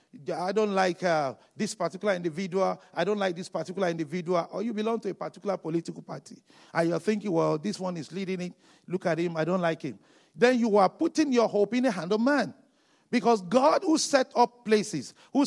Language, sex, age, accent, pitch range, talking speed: English, male, 50-69, Nigerian, 180-245 Hz, 215 wpm